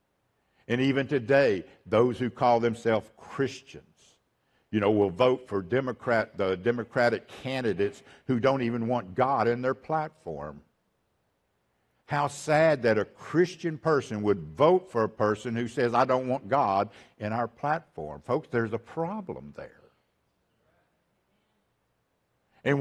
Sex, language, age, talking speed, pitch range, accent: male, English, 60-79, 135 wpm, 100-140 Hz, American